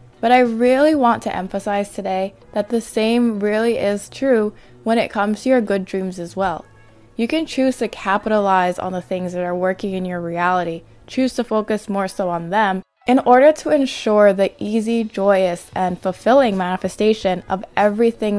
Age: 20-39